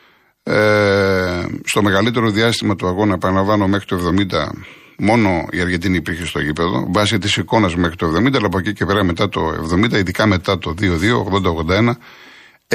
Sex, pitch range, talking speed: male, 90-110 Hz, 160 wpm